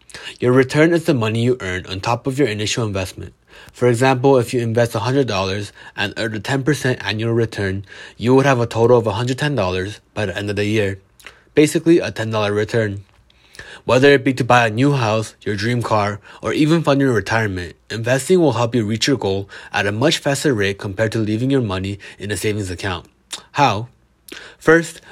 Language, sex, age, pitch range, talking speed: English, male, 20-39, 105-135 Hz, 195 wpm